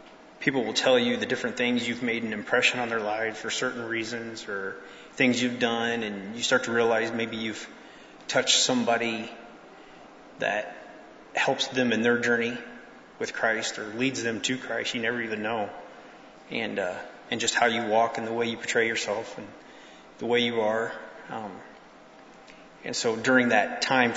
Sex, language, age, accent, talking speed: male, English, 30-49, American, 175 wpm